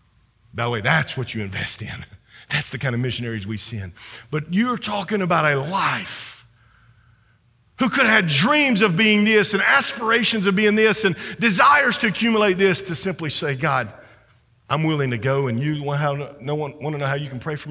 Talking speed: 210 wpm